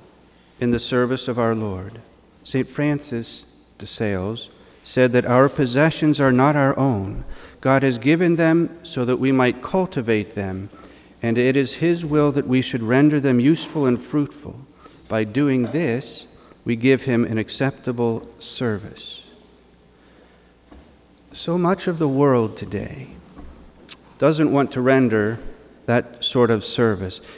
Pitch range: 110-140 Hz